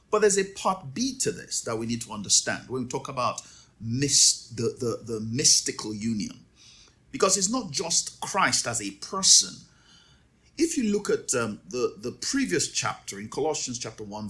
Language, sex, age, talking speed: English, male, 50-69, 175 wpm